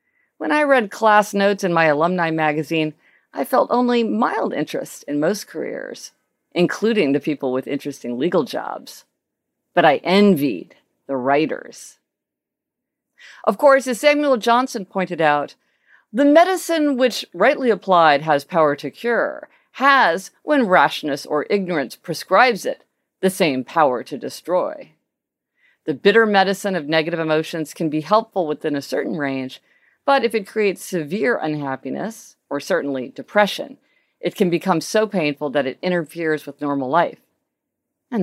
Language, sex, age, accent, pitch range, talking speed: English, female, 50-69, American, 150-230 Hz, 145 wpm